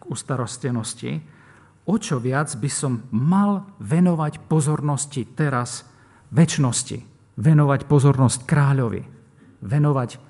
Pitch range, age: 110-140 Hz, 50-69